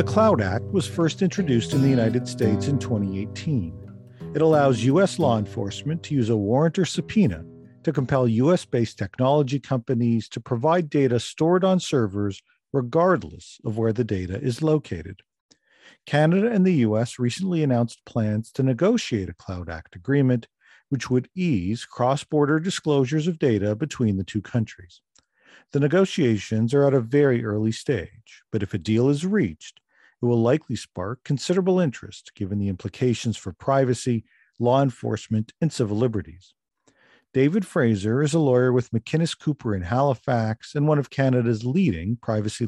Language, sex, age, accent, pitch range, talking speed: English, male, 50-69, American, 110-145 Hz, 155 wpm